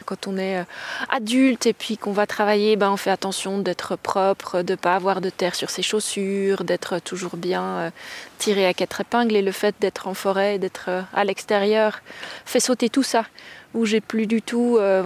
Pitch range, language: 200-260 Hz, French